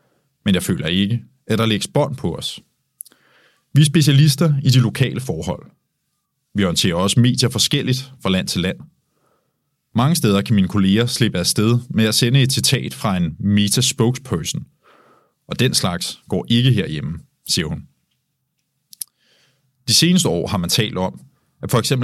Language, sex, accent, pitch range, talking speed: Danish, male, native, 100-135 Hz, 160 wpm